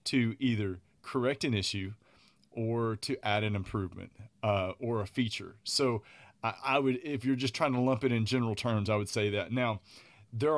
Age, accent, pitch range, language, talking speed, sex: 30-49, American, 105-125 Hz, English, 195 wpm, male